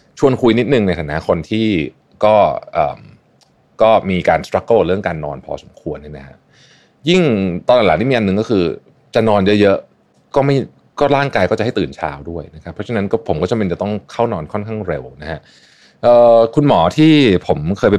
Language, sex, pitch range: Thai, male, 80-110 Hz